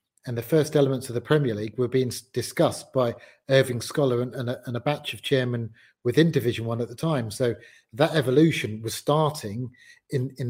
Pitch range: 115-135 Hz